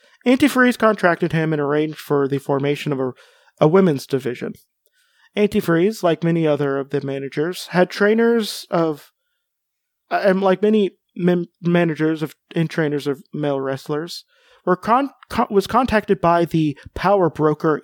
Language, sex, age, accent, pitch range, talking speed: English, male, 30-49, American, 150-205 Hz, 145 wpm